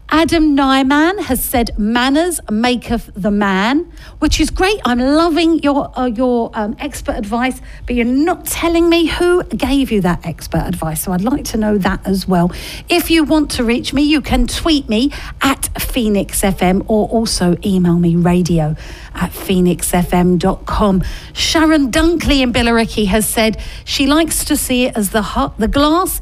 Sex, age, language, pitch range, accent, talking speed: female, 50-69, English, 200-295 Hz, British, 170 wpm